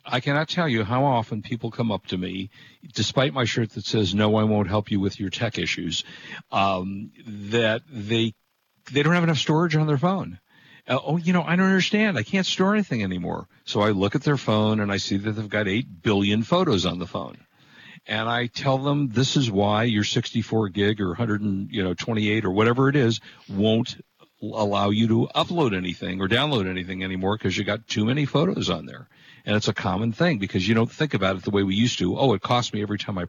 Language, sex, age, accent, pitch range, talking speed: English, male, 50-69, American, 100-135 Hz, 230 wpm